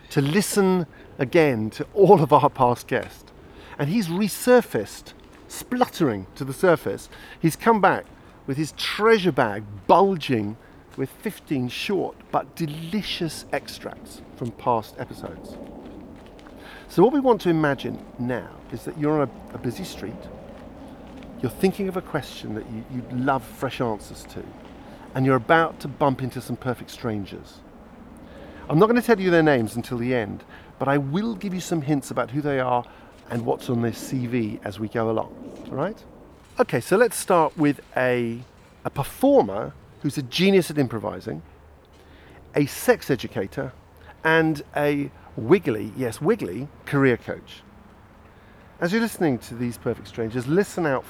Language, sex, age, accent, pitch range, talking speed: English, male, 50-69, British, 120-175 Hz, 155 wpm